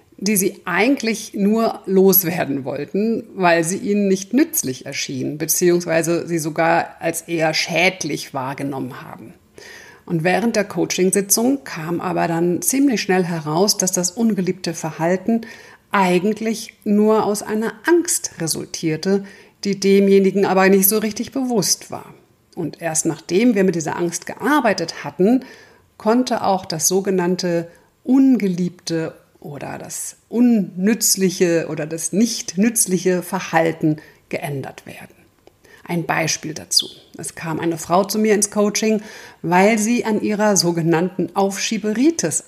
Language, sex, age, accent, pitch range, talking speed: German, female, 50-69, German, 170-220 Hz, 125 wpm